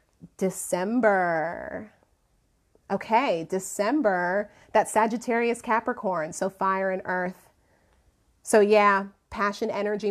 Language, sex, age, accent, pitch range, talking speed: English, female, 30-49, American, 180-215 Hz, 85 wpm